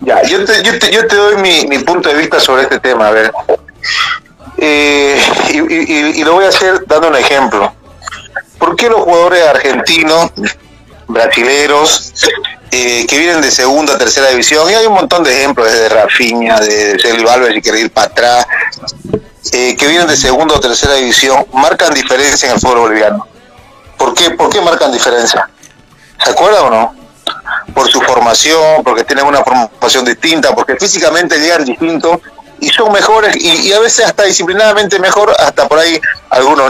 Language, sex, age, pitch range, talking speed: Spanish, male, 30-49, 135-200 Hz, 180 wpm